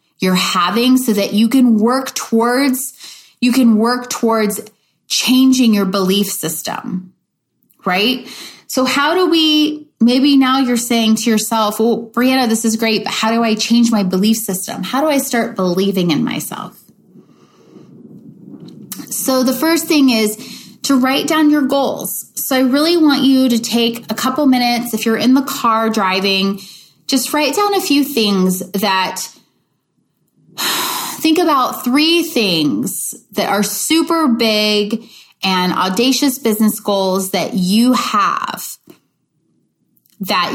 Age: 20-39